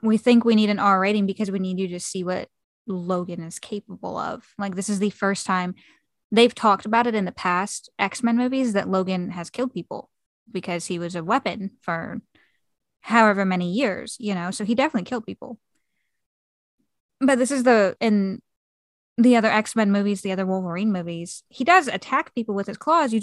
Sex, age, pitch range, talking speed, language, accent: female, 10-29, 185-225 Hz, 195 wpm, English, American